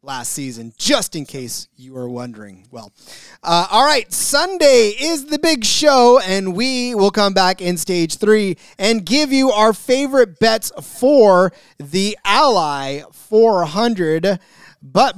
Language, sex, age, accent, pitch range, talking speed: English, male, 30-49, American, 175-240 Hz, 140 wpm